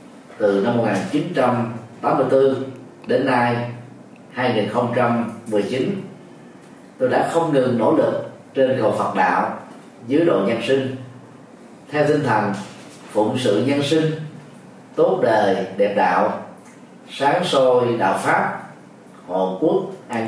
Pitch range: 120-145 Hz